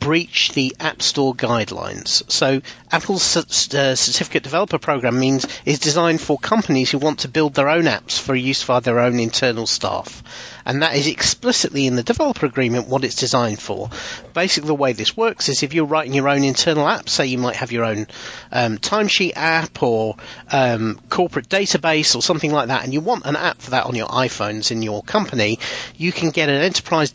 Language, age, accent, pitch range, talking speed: English, 40-59, British, 125-160 Hz, 195 wpm